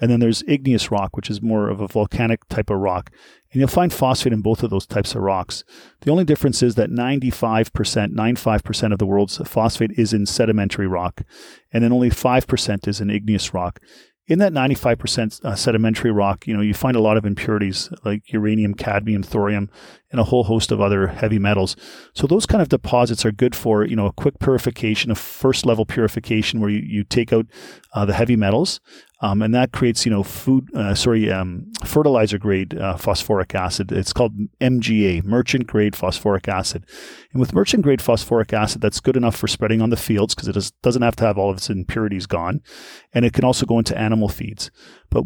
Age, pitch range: 40-59, 100-125 Hz